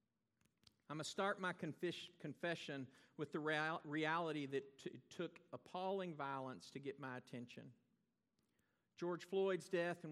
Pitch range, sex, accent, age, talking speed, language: 130-170 Hz, male, American, 50-69, 140 wpm, English